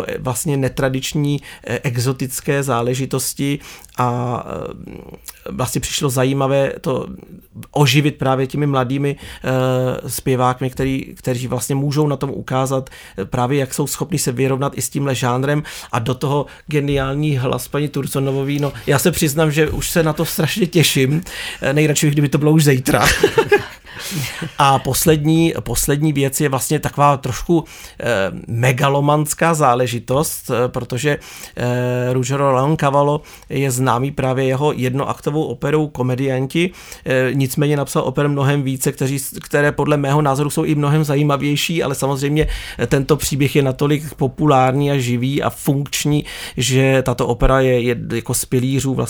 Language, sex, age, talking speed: Slovak, male, 40-59, 130 wpm